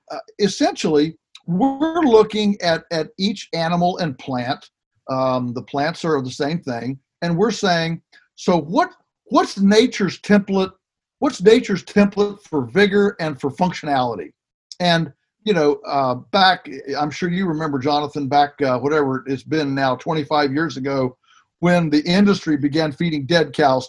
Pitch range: 145-190 Hz